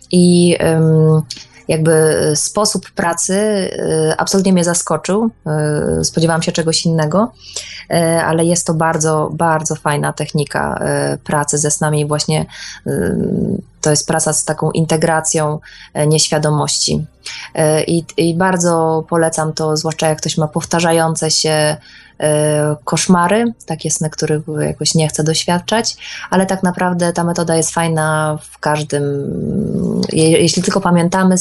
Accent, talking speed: native, 115 wpm